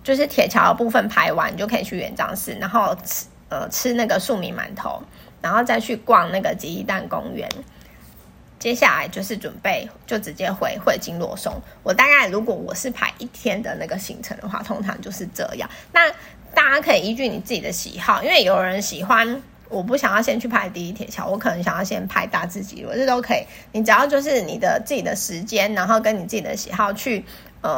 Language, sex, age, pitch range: Chinese, female, 20-39, 200-260 Hz